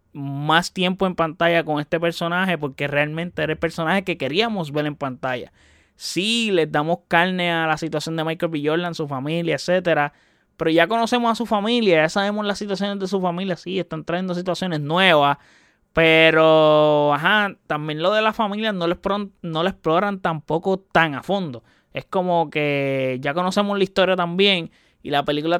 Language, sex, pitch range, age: Spanish, male, 150-185 Hz, 20-39